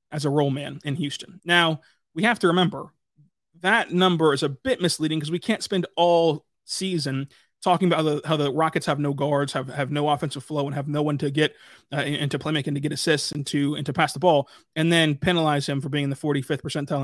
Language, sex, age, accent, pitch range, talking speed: English, male, 30-49, American, 145-180 Hz, 235 wpm